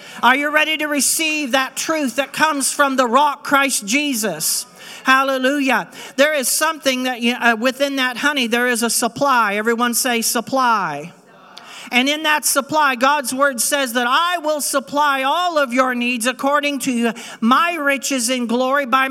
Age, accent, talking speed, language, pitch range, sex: 50-69, American, 165 wpm, English, 235-285 Hz, male